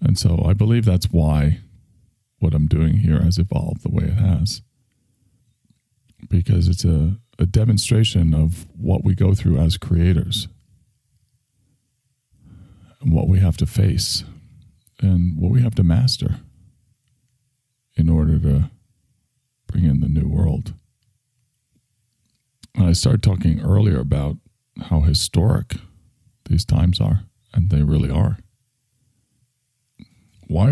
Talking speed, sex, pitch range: 125 wpm, male, 85-120 Hz